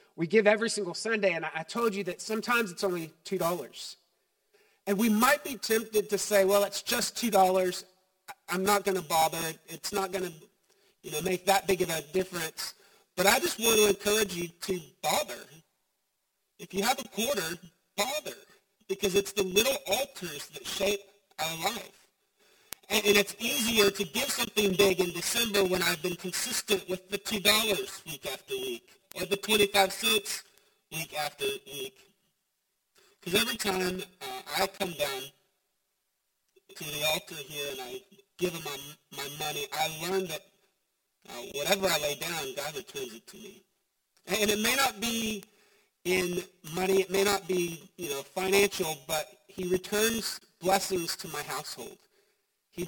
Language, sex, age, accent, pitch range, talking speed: English, male, 40-59, American, 185-205 Hz, 165 wpm